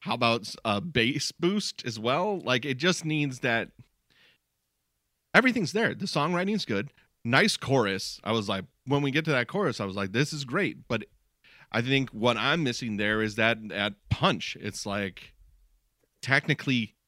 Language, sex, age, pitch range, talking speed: English, male, 30-49, 95-130 Hz, 170 wpm